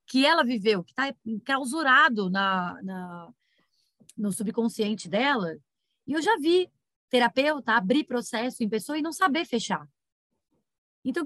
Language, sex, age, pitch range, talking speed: Portuguese, female, 20-39, 190-270 Hz, 130 wpm